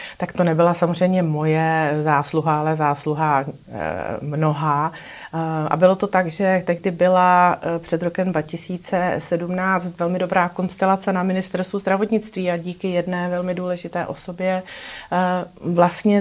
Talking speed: 120 wpm